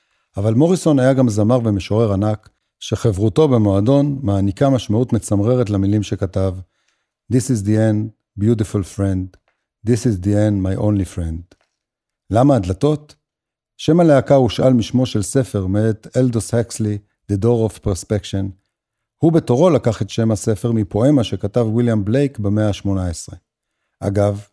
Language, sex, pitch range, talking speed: Hebrew, male, 100-125 Hz, 135 wpm